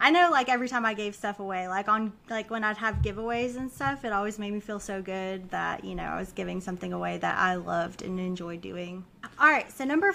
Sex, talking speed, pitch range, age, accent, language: female, 255 wpm, 205-245 Hz, 20-39, American, English